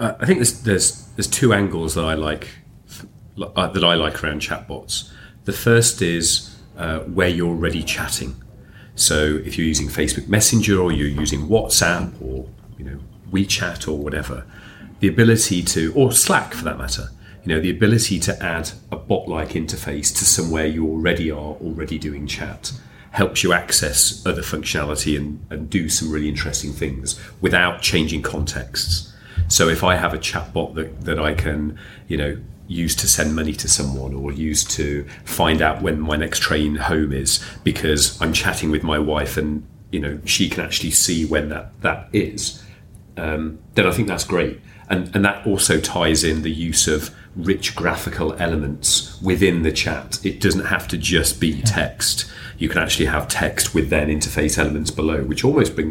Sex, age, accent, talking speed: male, 40-59, British, 180 wpm